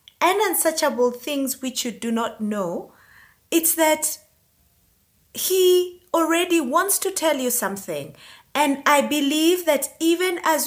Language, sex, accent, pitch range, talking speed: English, female, South African, 235-320 Hz, 130 wpm